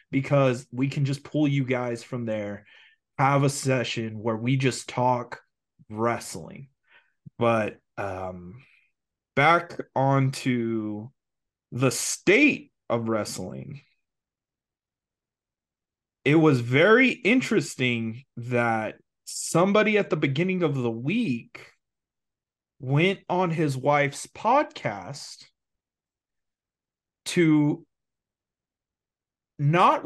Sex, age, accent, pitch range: male, 30-49, American, 120-160 Hz